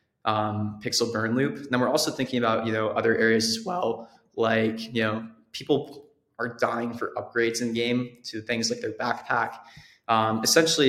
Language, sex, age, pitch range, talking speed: English, male, 20-39, 115-130 Hz, 185 wpm